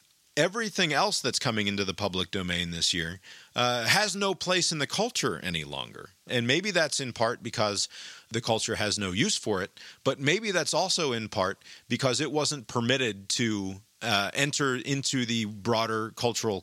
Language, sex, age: English, male, 40-59